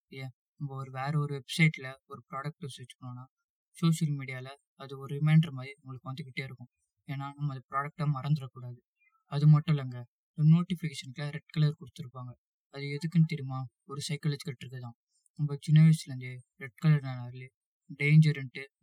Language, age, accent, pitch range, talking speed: Tamil, 20-39, native, 130-150 Hz, 145 wpm